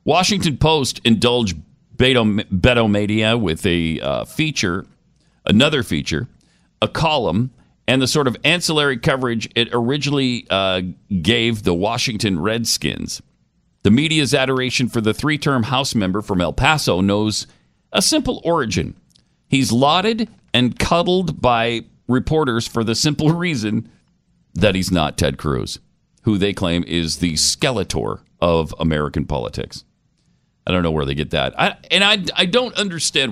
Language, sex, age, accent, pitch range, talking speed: English, male, 50-69, American, 90-135 Hz, 140 wpm